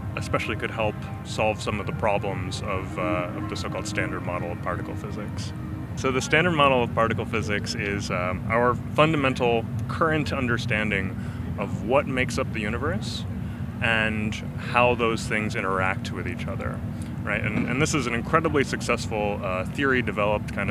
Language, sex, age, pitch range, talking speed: Danish, male, 30-49, 105-125 Hz, 165 wpm